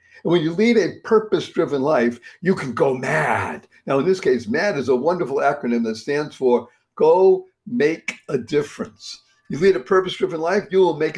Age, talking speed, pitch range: 60-79, 190 wpm, 135-210 Hz